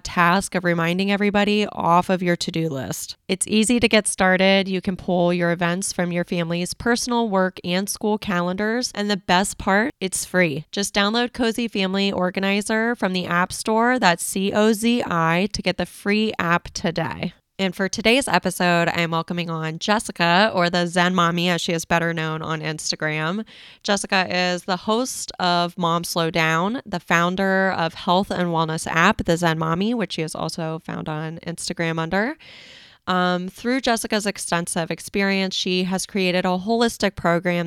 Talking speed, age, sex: 170 wpm, 20-39, female